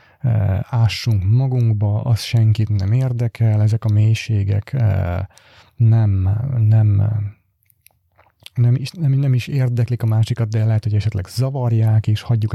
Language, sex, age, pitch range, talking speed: Hungarian, male, 30-49, 110-125 Hz, 125 wpm